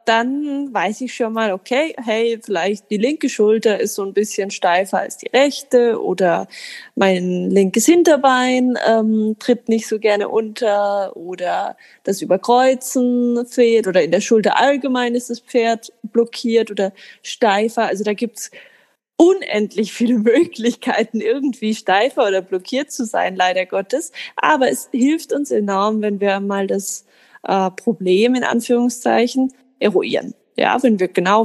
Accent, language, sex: German, German, female